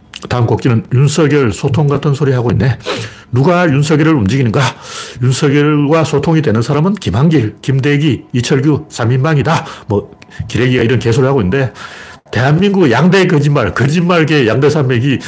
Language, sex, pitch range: Korean, male, 115-160 Hz